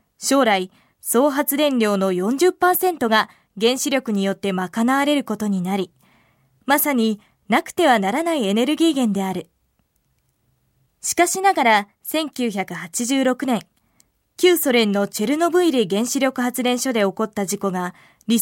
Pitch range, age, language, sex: 200-280 Hz, 20-39, Chinese, female